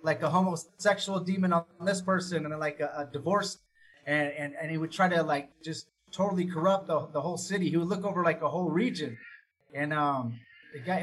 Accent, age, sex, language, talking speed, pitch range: American, 30-49, male, English, 210 wpm, 160-200 Hz